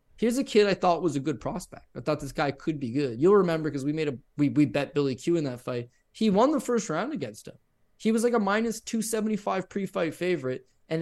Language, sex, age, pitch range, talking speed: English, male, 20-39, 140-175 Hz, 250 wpm